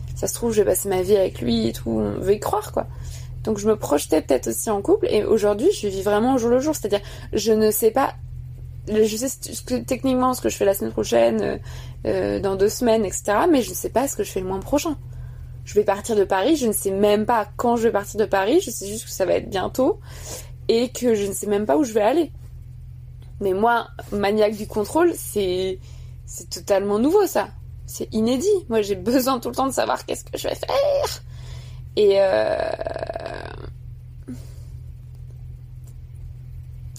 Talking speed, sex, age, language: 210 wpm, female, 20-39, French